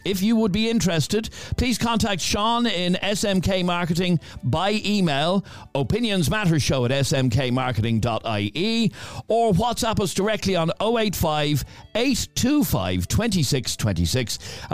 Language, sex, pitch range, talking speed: English, male, 115-175 Hz, 90 wpm